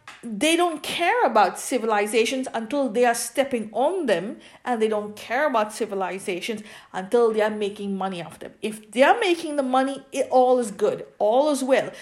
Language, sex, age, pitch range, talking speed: English, female, 50-69, 205-275 Hz, 185 wpm